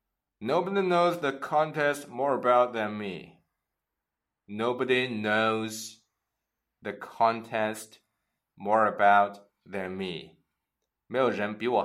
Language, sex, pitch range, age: Chinese, male, 105-130 Hz, 20-39